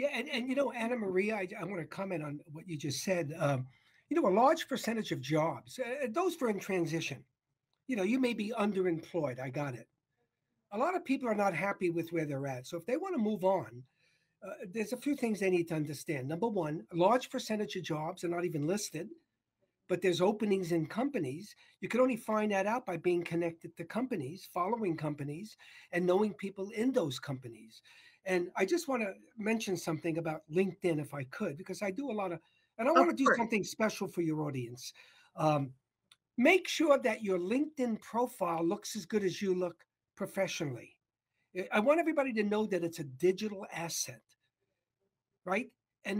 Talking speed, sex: 200 wpm, male